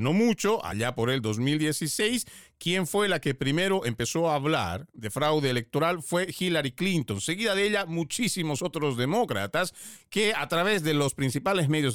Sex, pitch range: male, 115-180 Hz